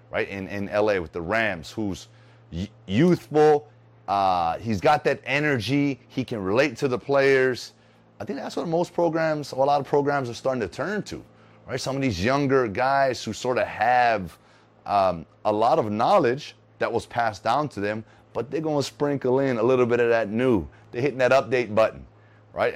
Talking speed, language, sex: 200 wpm, English, male